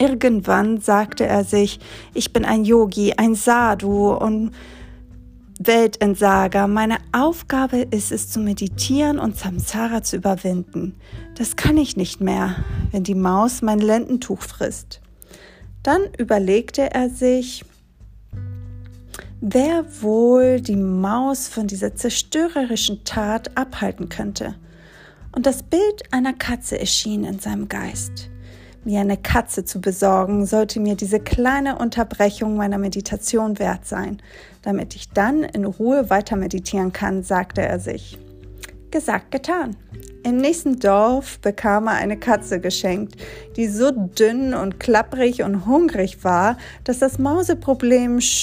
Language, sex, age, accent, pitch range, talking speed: German, female, 30-49, German, 190-250 Hz, 125 wpm